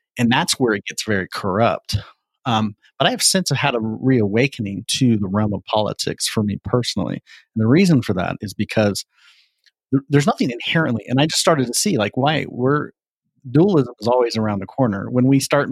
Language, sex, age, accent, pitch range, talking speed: English, male, 40-59, American, 110-140 Hz, 200 wpm